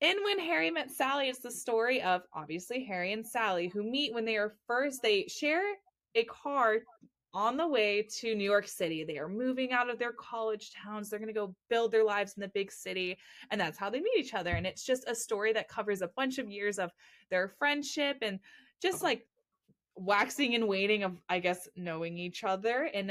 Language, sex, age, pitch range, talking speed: English, female, 20-39, 185-260 Hz, 215 wpm